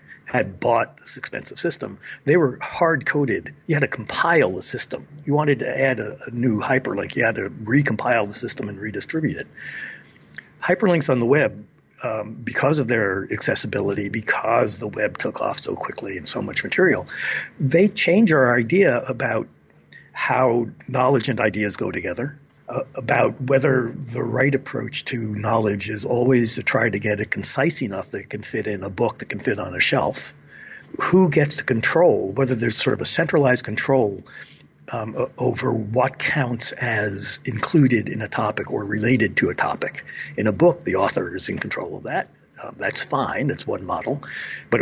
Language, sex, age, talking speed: English, male, 60-79, 180 wpm